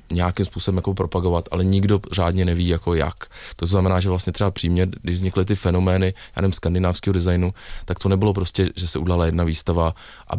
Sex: male